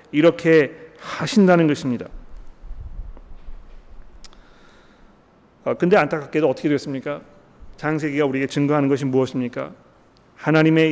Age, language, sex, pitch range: 40-59, Korean, male, 145-190 Hz